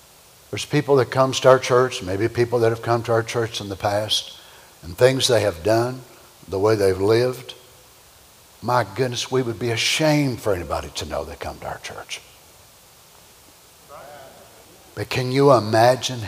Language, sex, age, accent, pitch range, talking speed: English, male, 60-79, American, 105-130 Hz, 170 wpm